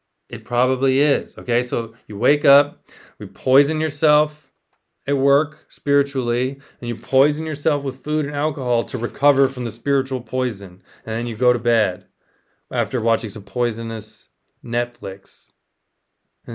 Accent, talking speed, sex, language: American, 145 wpm, male, English